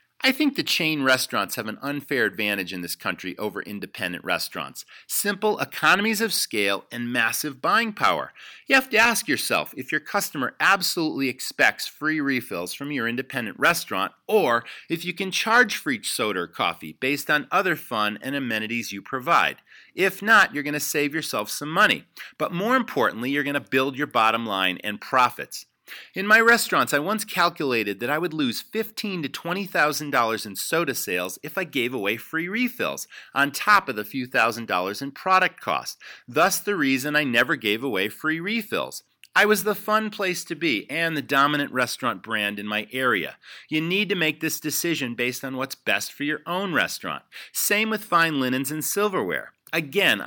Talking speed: 185 wpm